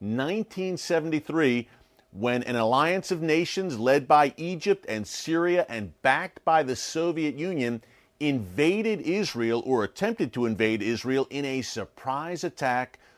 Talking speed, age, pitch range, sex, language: 125 wpm, 40-59, 115-150 Hz, male, English